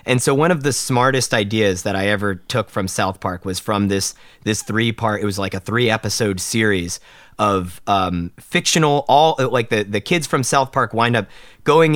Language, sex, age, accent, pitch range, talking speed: English, male, 30-49, American, 100-125 Hz, 205 wpm